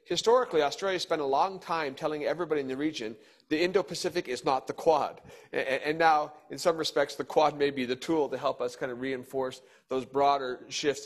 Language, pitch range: English, 130-165 Hz